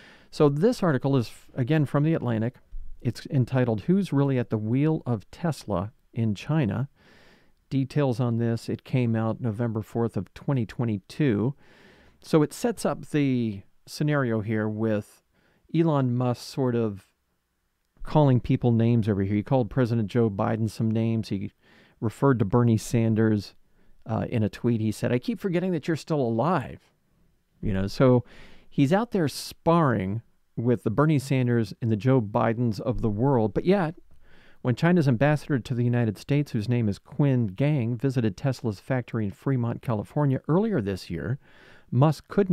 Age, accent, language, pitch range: 40-59, American, English, 110-150 Hz